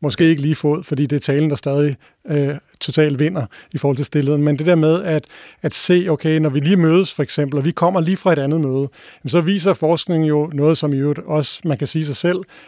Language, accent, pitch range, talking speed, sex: Danish, native, 145-170 Hz, 245 wpm, male